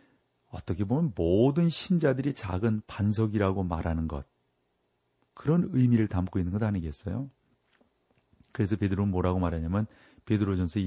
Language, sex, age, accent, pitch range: Korean, male, 40-59, native, 90-130 Hz